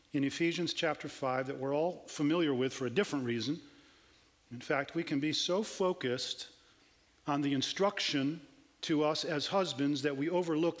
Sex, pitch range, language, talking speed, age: male, 140-160 Hz, English, 165 wpm, 40-59